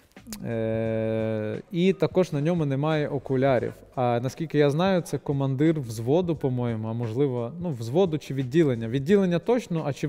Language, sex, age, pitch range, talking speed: Russian, male, 20-39, 120-160 Hz, 150 wpm